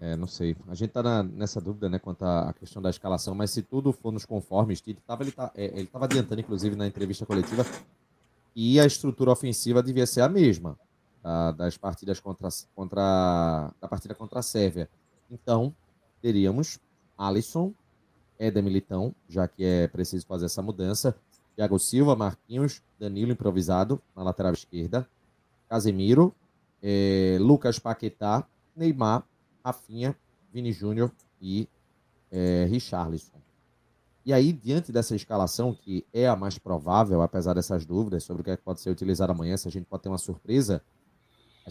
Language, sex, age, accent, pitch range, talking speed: Portuguese, male, 30-49, Brazilian, 95-120 Hz, 155 wpm